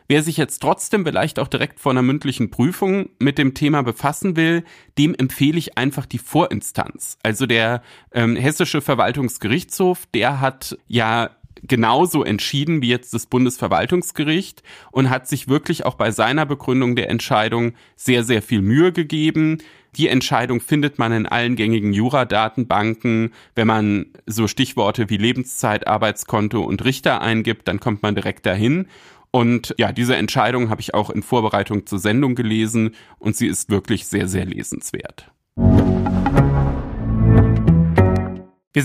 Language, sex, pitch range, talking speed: German, male, 110-150 Hz, 145 wpm